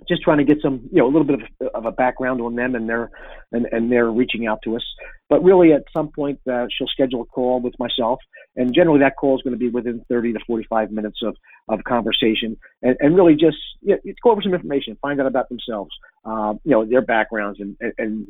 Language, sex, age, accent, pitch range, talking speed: English, male, 40-59, American, 115-140 Hz, 245 wpm